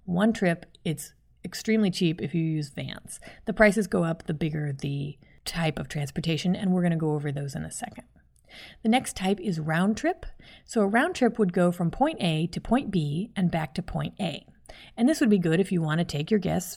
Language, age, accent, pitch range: English, 30-49, American, 165-215 Hz